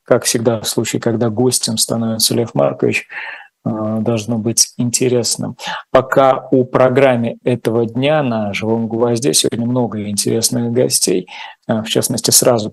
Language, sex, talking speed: Russian, male, 125 wpm